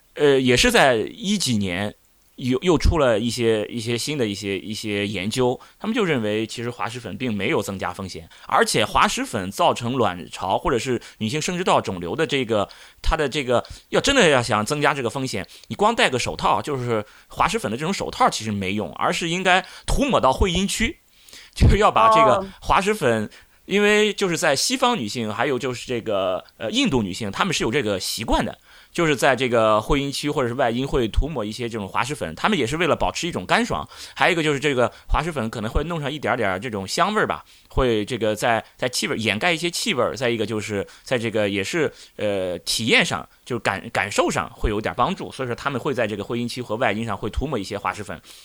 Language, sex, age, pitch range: Chinese, male, 20-39, 105-165 Hz